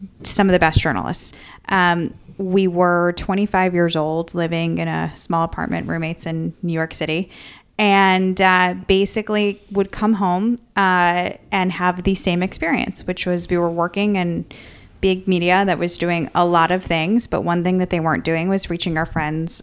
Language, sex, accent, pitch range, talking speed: English, female, American, 170-205 Hz, 180 wpm